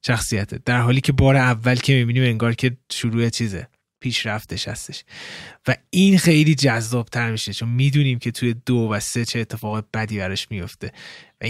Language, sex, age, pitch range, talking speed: Persian, male, 20-39, 110-140 Hz, 165 wpm